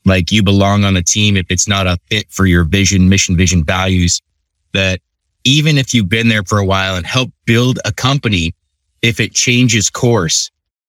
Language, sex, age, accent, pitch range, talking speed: English, male, 30-49, American, 90-115 Hz, 195 wpm